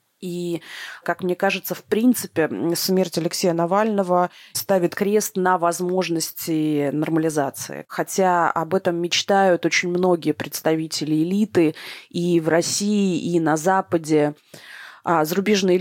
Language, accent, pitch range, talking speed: Russian, native, 165-190 Hz, 110 wpm